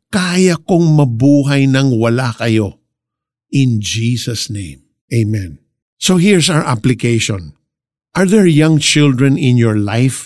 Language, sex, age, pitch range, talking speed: Filipino, male, 50-69, 115-140 Hz, 125 wpm